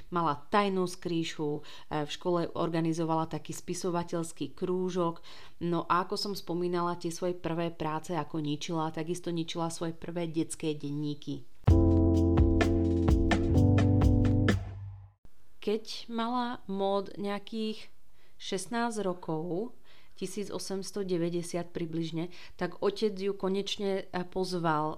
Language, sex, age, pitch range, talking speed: Slovak, female, 30-49, 160-180 Hz, 95 wpm